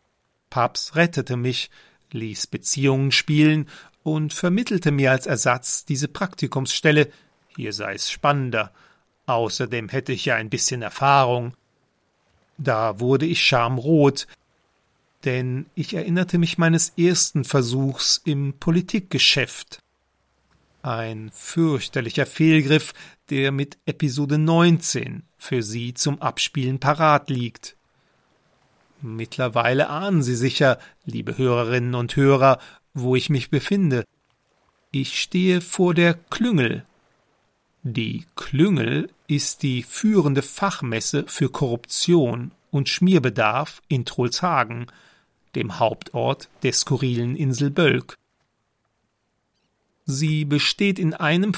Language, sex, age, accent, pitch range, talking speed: German, male, 40-59, German, 125-160 Hz, 105 wpm